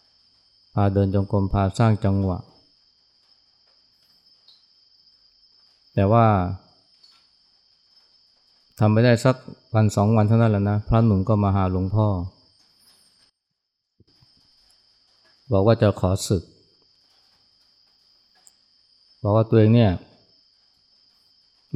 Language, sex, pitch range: Thai, male, 95-110 Hz